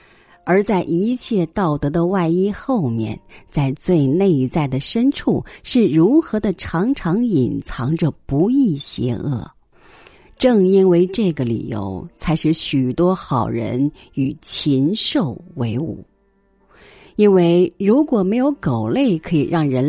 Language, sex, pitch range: Chinese, female, 140-200 Hz